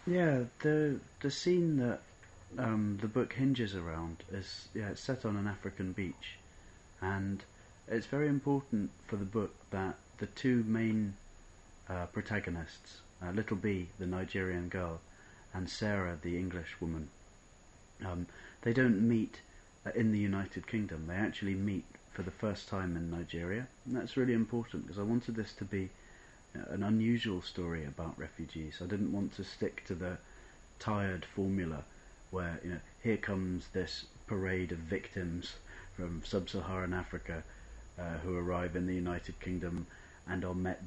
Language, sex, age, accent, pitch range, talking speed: English, male, 30-49, British, 85-105 Hz, 155 wpm